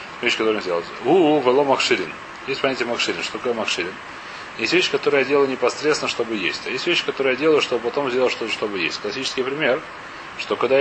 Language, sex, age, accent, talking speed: Russian, male, 30-49, native, 205 wpm